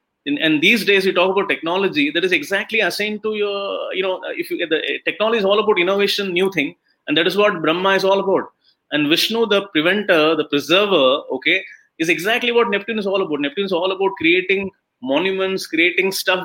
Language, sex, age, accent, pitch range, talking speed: English, male, 30-49, Indian, 170-230 Hz, 210 wpm